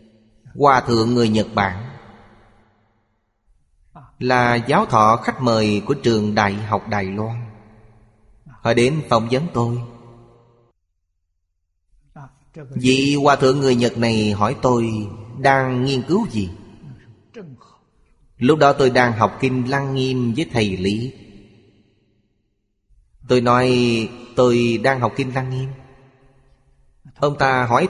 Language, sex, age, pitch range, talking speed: Vietnamese, male, 20-39, 105-135 Hz, 120 wpm